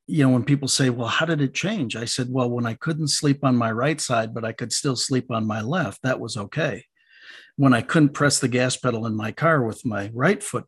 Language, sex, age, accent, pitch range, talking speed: English, male, 50-69, American, 115-140 Hz, 260 wpm